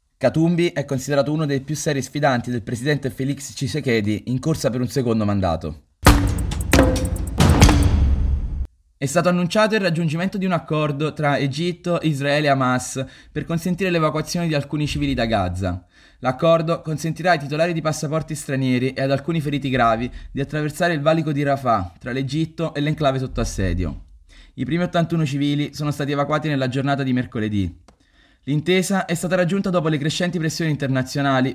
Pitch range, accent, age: 120-155 Hz, native, 20-39